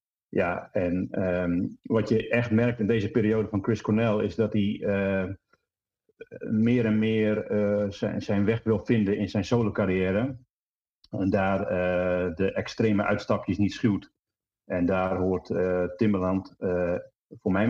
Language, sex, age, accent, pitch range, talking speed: Dutch, male, 40-59, Dutch, 90-105 Hz, 155 wpm